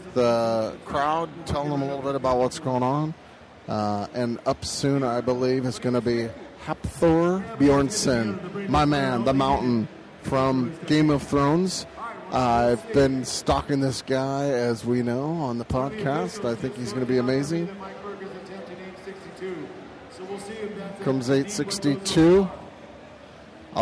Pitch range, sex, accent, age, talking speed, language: 125-170 Hz, male, American, 30-49, 130 wpm, English